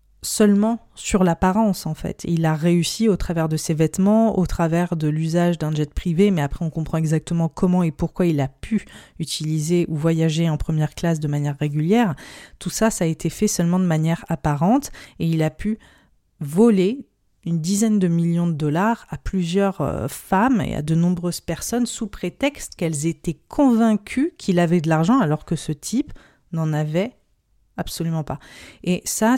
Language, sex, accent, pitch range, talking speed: French, female, French, 160-200 Hz, 180 wpm